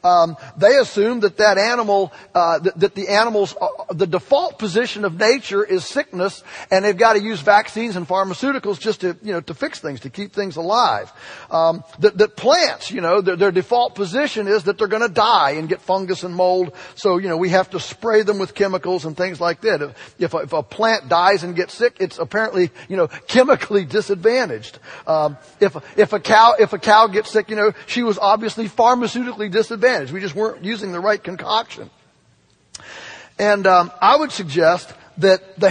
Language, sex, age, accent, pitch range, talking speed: English, male, 40-59, American, 185-225 Hz, 200 wpm